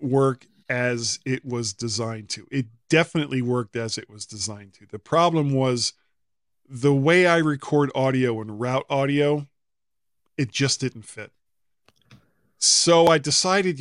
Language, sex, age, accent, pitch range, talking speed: English, male, 40-59, American, 115-150 Hz, 140 wpm